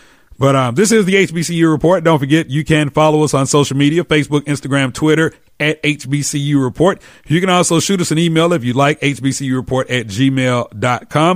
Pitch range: 130-160 Hz